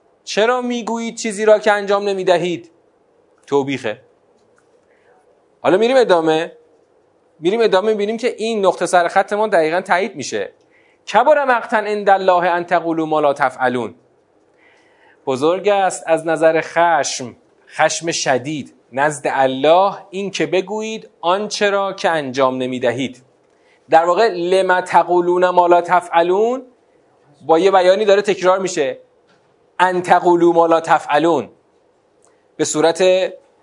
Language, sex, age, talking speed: Persian, male, 30-49, 110 wpm